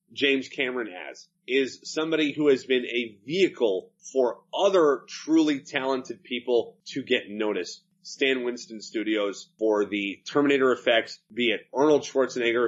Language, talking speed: English, 135 wpm